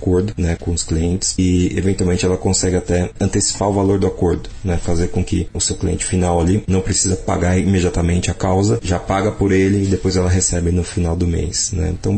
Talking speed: 215 wpm